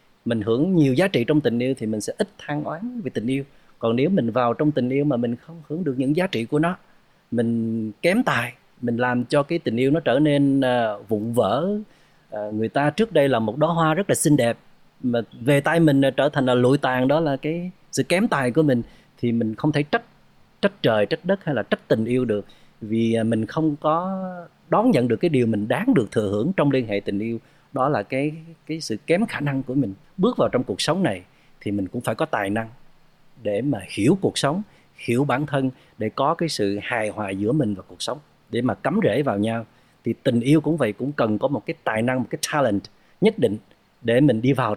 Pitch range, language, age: 115-155 Hz, Vietnamese, 30-49